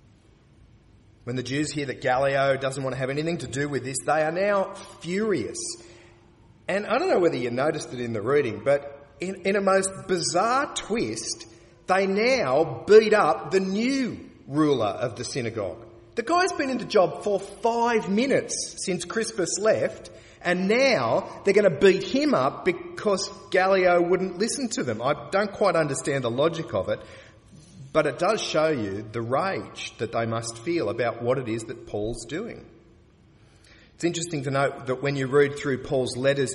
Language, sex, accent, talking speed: English, male, Australian, 180 wpm